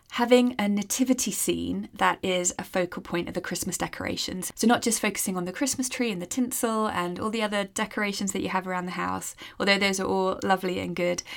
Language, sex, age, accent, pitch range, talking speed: English, female, 20-39, British, 180-220 Hz, 220 wpm